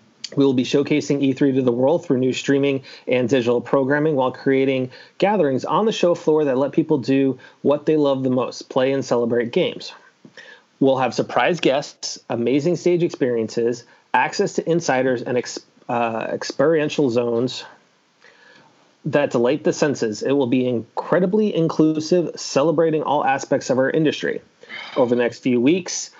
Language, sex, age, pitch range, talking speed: English, male, 30-49, 125-150 Hz, 155 wpm